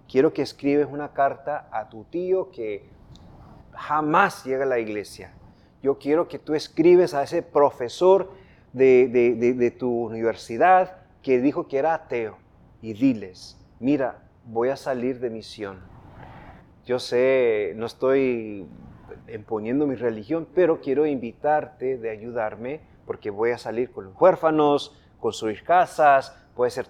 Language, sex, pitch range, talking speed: Spanish, male, 115-155 Hz, 140 wpm